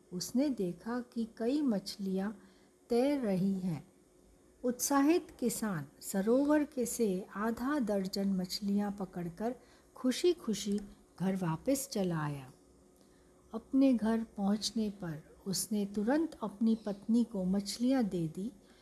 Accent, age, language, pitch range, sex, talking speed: native, 60-79, Hindi, 195-245 Hz, female, 110 wpm